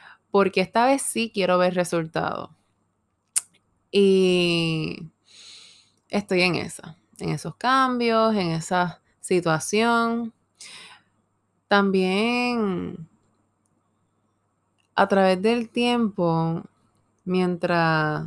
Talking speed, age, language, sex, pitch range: 75 wpm, 20-39, Spanish, female, 165-200 Hz